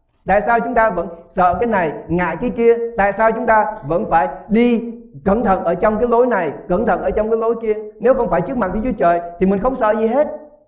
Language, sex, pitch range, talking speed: English, male, 150-225 Hz, 260 wpm